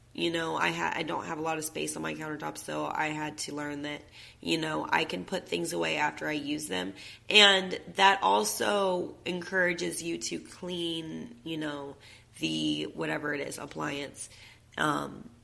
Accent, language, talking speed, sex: American, English, 180 wpm, female